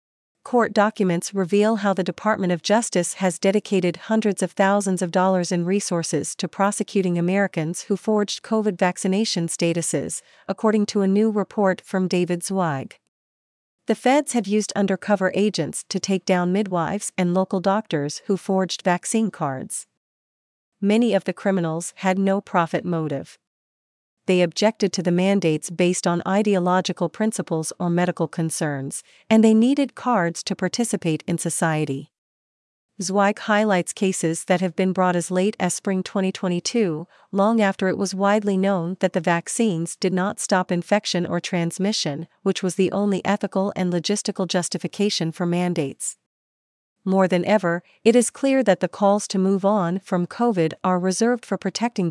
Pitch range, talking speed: 175-205 Hz, 155 wpm